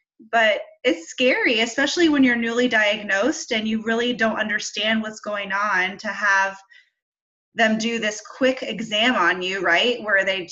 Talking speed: 160 wpm